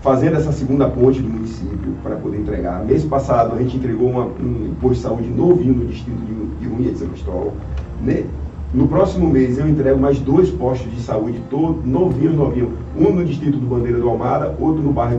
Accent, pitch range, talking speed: Brazilian, 100-135 Hz, 190 wpm